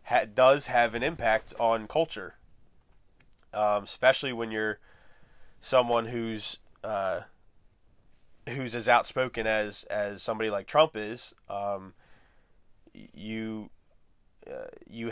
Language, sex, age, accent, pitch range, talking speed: English, male, 20-39, American, 105-120 Hz, 105 wpm